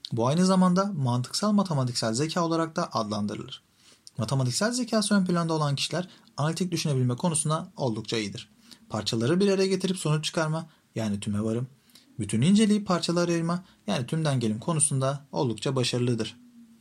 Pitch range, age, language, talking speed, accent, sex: 120-180 Hz, 40-59, Turkish, 140 wpm, native, male